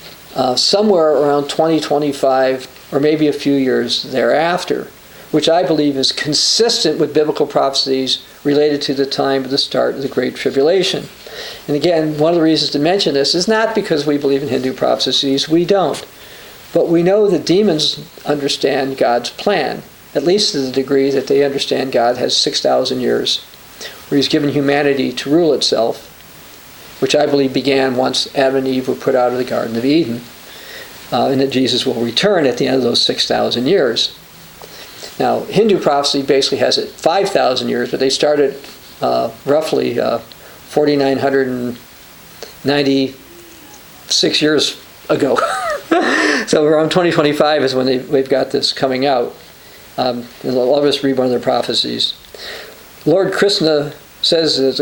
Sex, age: male, 50-69